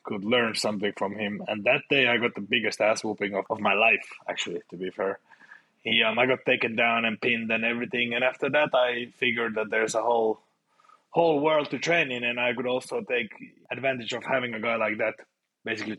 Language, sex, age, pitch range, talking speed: English, male, 20-39, 110-140 Hz, 220 wpm